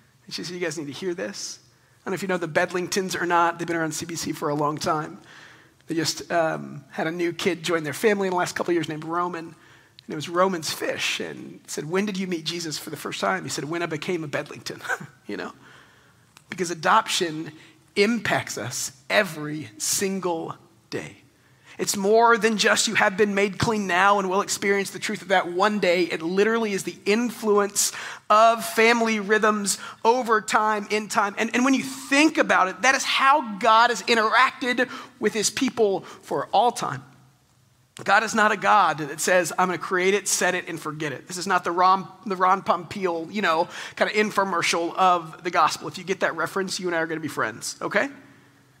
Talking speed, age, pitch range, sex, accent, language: 215 wpm, 40-59, 170-215 Hz, male, American, English